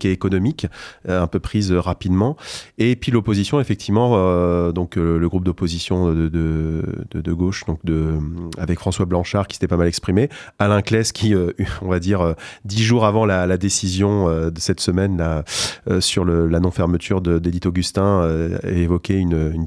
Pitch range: 90-100 Hz